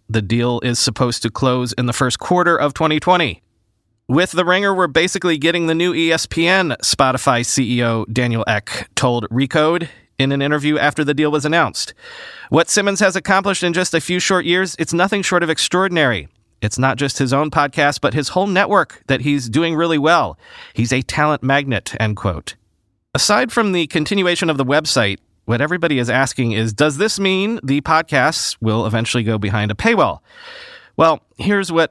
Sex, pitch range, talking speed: male, 120-175 Hz, 180 wpm